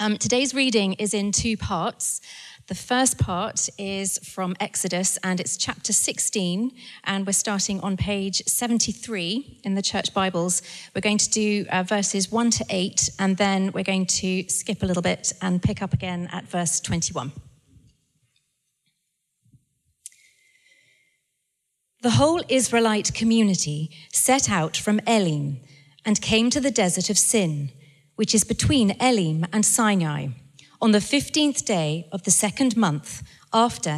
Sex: female